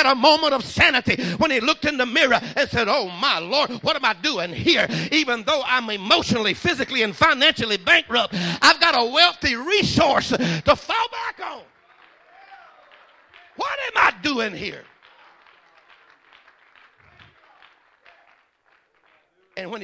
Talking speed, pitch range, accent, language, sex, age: 135 wpm, 240-370 Hz, American, English, male, 60-79